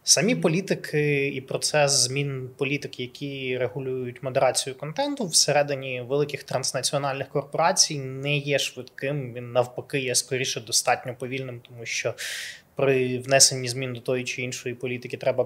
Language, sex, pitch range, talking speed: Ukrainian, male, 125-140 Hz, 130 wpm